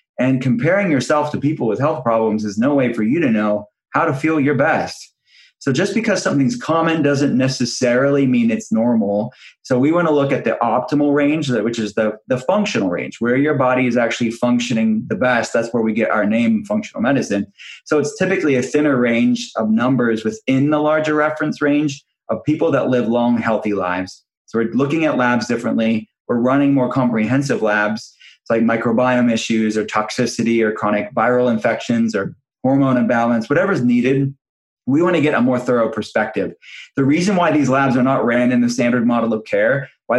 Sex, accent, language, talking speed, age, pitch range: male, American, English, 190 wpm, 20-39, 115-140 Hz